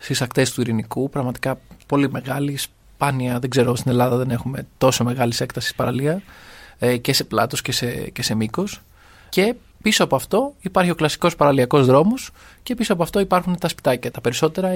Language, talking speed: Greek, 180 wpm